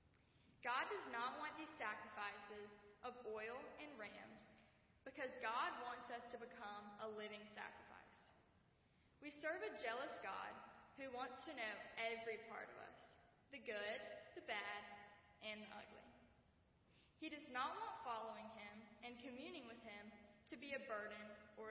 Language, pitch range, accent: English, 210-265 Hz, American